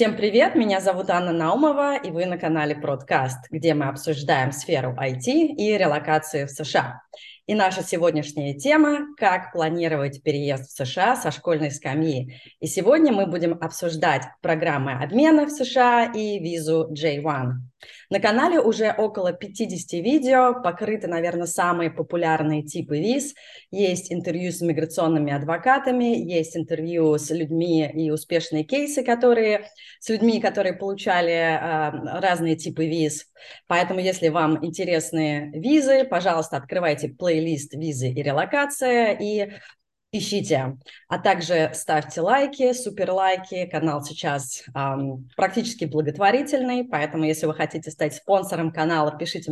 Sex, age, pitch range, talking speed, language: female, 20-39, 155-205 Hz, 130 wpm, Russian